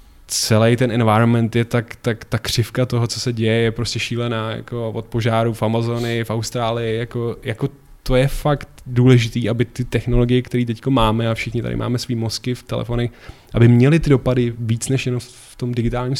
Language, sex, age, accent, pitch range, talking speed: Czech, male, 20-39, native, 110-125 Hz, 195 wpm